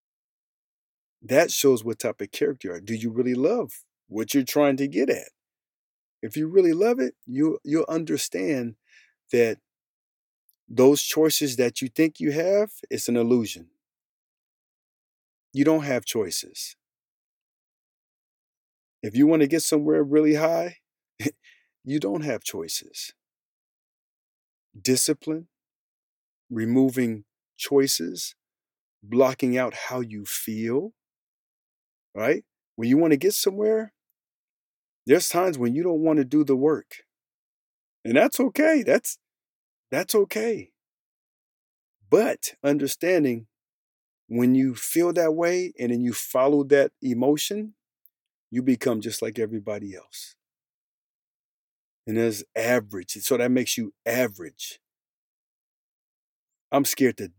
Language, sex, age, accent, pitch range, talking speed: English, male, 40-59, American, 120-165 Hz, 120 wpm